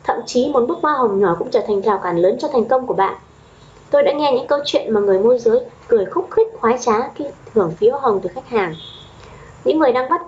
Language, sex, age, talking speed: Vietnamese, female, 20-39, 255 wpm